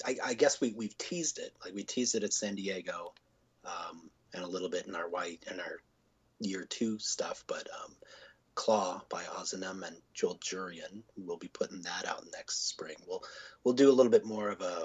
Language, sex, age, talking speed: English, male, 30-49, 205 wpm